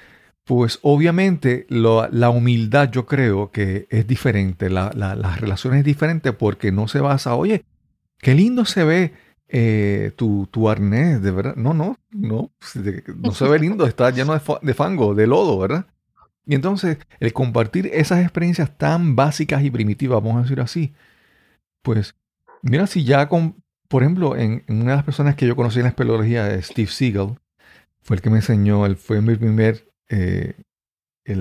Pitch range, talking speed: 105-140 Hz, 175 wpm